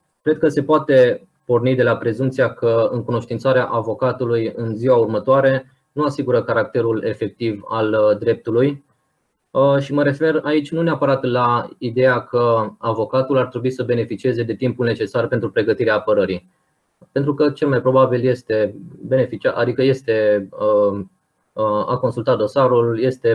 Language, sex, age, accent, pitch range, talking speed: Romanian, male, 20-39, native, 115-140 Hz, 135 wpm